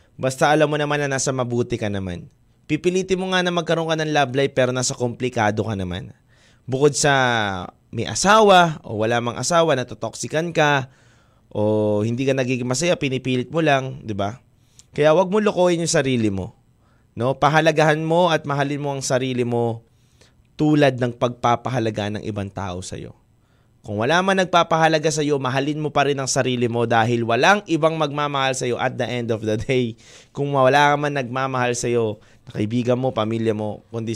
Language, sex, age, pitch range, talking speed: Filipino, male, 20-39, 115-150 Hz, 170 wpm